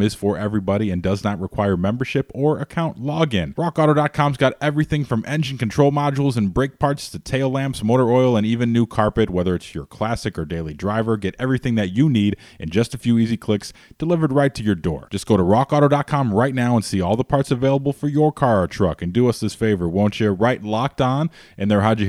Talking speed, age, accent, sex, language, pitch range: 230 wpm, 30-49, American, male, English, 95-125 Hz